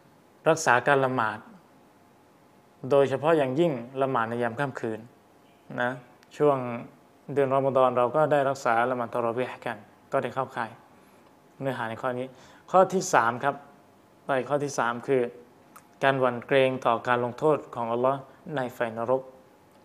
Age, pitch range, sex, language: 20-39, 125-145 Hz, male, Thai